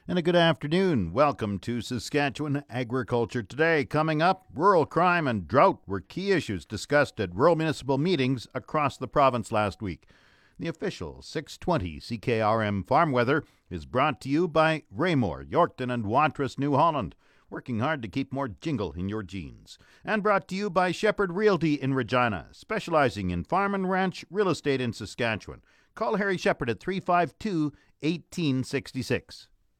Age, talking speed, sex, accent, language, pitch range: 50-69, 155 wpm, male, American, English, 115-160 Hz